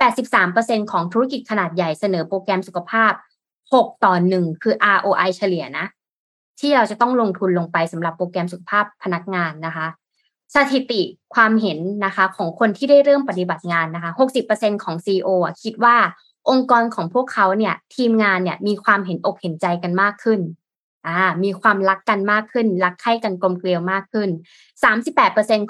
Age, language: 20-39, Thai